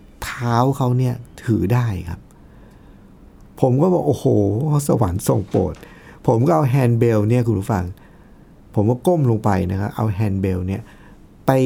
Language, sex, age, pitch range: Thai, male, 60-79, 110-150 Hz